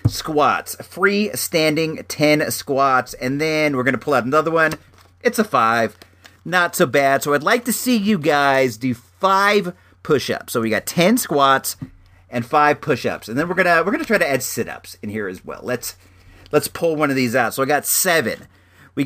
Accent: American